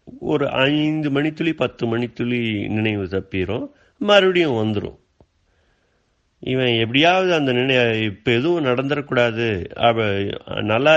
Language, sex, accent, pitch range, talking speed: Tamil, male, native, 90-120 Hz, 100 wpm